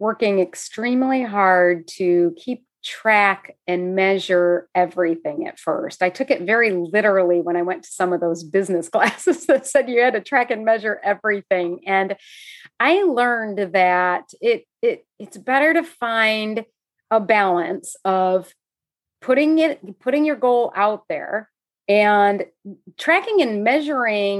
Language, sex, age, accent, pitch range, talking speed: English, female, 30-49, American, 195-265 Hz, 145 wpm